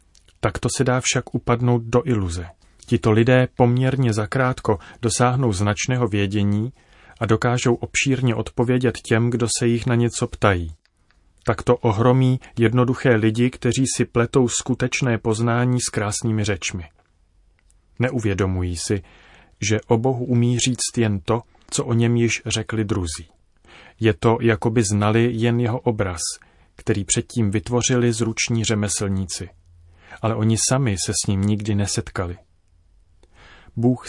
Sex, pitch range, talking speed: male, 100-120 Hz, 130 wpm